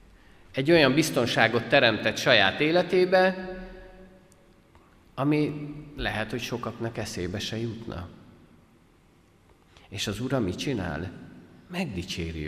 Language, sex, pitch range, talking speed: Hungarian, male, 90-145 Hz, 90 wpm